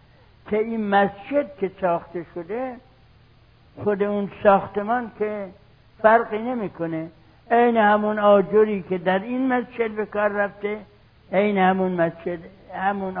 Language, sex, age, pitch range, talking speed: Persian, male, 60-79, 130-205 Hz, 120 wpm